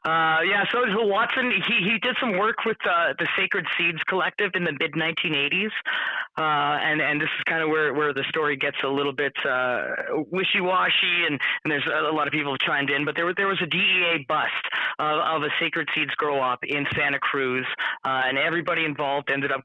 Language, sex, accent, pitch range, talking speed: English, male, American, 135-170 Hz, 210 wpm